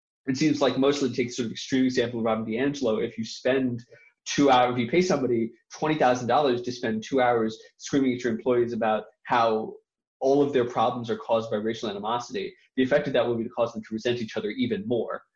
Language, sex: English, male